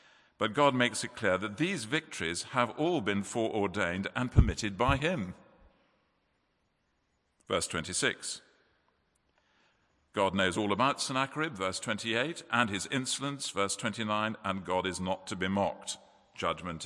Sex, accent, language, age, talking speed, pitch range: male, British, English, 50-69, 135 wpm, 85-125 Hz